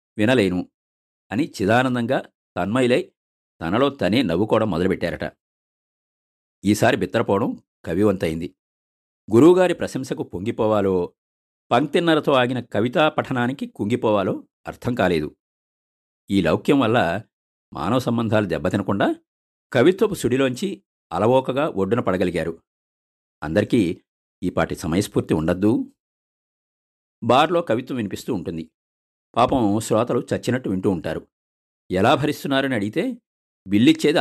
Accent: native